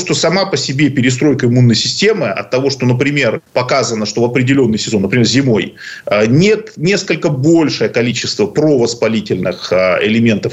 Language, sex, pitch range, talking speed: Russian, male, 120-150 Hz, 135 wpm